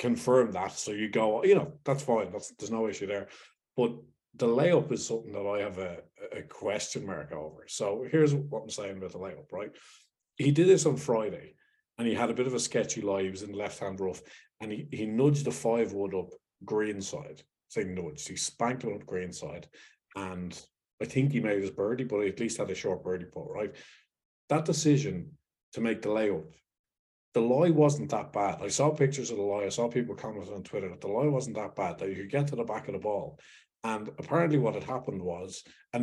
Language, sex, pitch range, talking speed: English, male, 100-140 Hz, 230 wpm